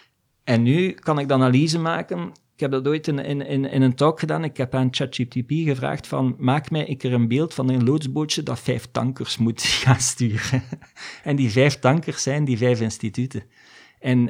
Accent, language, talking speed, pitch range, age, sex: Dutch, Dutch, 195 wpm, 115-135 Hz, 50-69, male